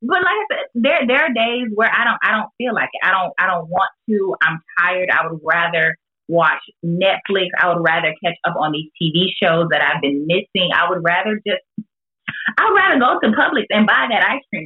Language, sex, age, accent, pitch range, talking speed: English, female, 20-39, American, 165-215 Hz, 230 wpm